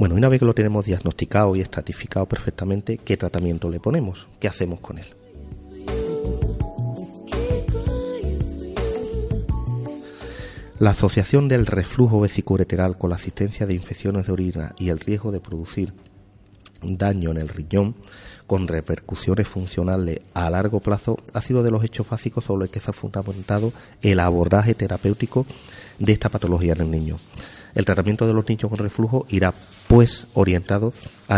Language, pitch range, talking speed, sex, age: Spanish, 90-110 Hz, 145 wpm, male, 30-49